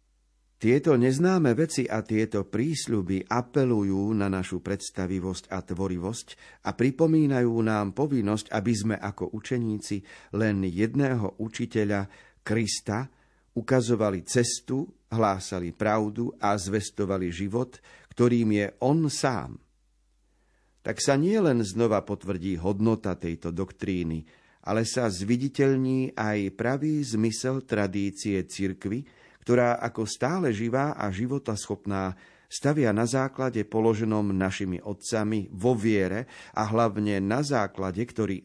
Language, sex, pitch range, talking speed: Slovak, male, 95-120 Hz, 110 wpm